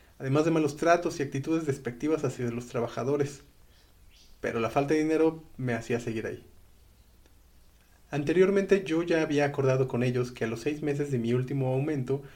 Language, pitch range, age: Spanish, 115-150 Hz, 30-49